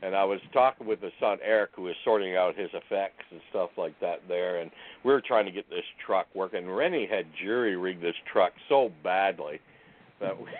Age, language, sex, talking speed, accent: 60-79, English, male, 205 wpm, American